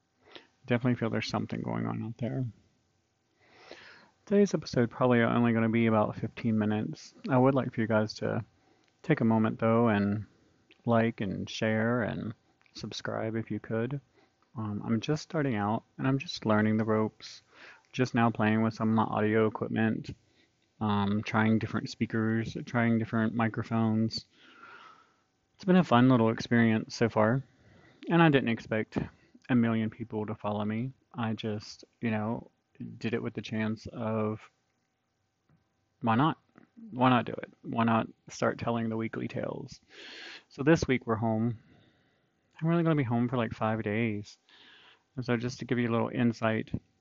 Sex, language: male, English